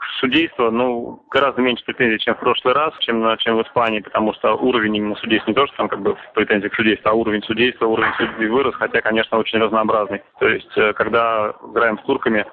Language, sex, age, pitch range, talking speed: Russian, male, 30-49, 110-120 Hz, 210 wpm